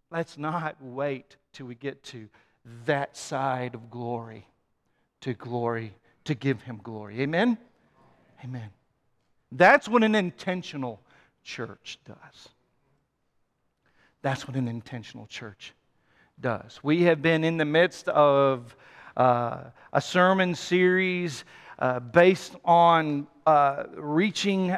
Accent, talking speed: American, 115 wpm